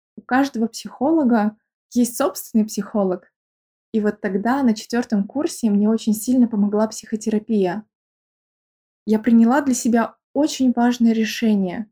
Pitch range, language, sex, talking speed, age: 220-260 Hz, Russian, female, 120 wpm, 20-39